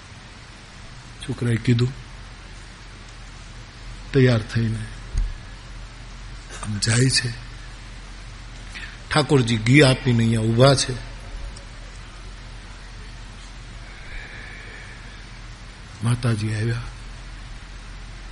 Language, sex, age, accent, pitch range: Gujarati, male, 50-69, native, 110-185 Hz